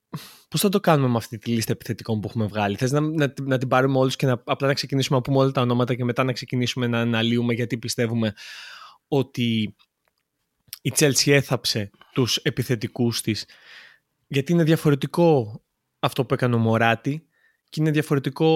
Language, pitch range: Greek, 120-155 Hz